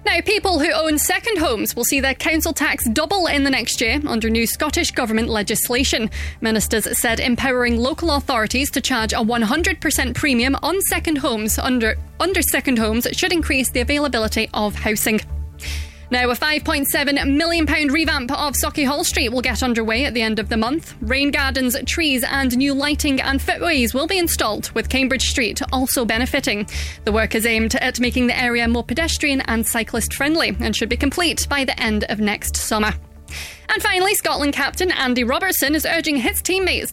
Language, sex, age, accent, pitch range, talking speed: English, female, 20-39, British, 235-310 Hz, 180 wpm